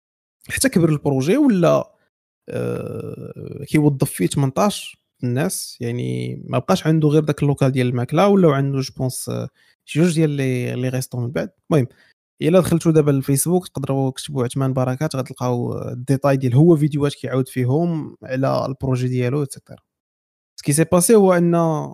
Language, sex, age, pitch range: Arabic, male, 20-39, 130-160 Hz